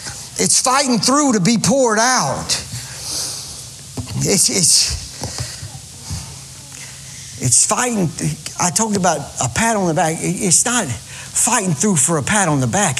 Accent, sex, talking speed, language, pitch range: American, male, 135 wpm, English, 150-225 Hz